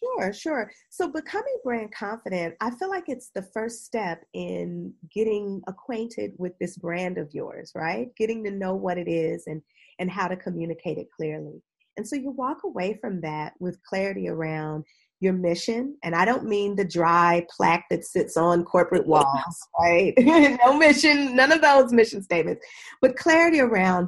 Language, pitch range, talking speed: English, 165-220 Hz, 175 wpm